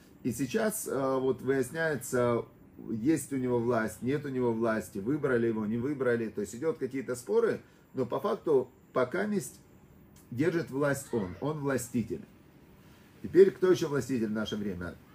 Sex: male